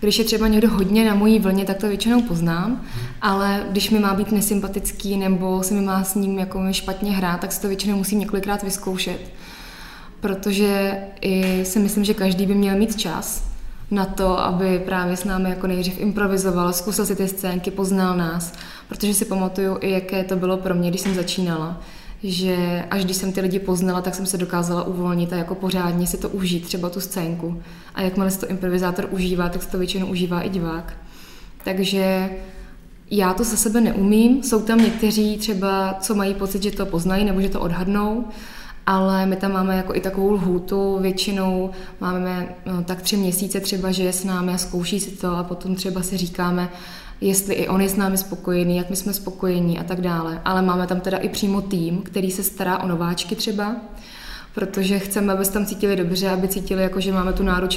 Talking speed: 200 wpm